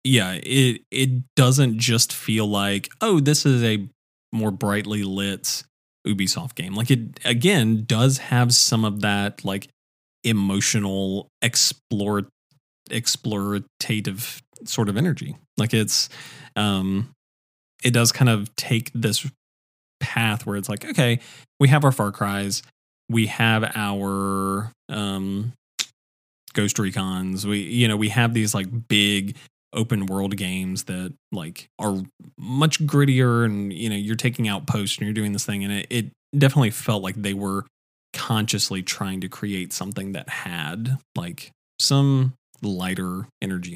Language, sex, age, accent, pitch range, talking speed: English, male, 20-39, American, 100-125 Hz, 140 wpm